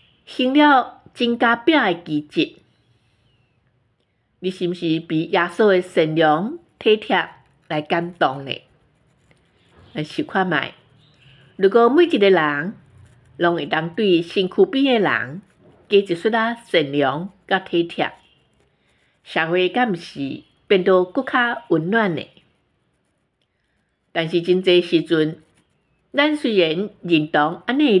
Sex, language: female, Chinese